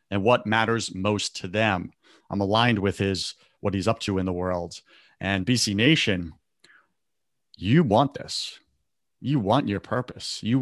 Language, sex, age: English, male, 30-49